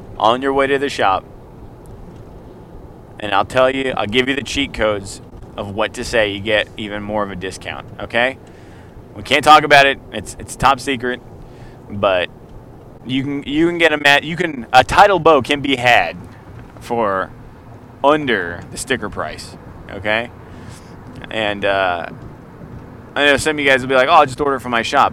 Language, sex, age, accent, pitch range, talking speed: English, male, 20-39, American, 110-140 Hz, 185 wpm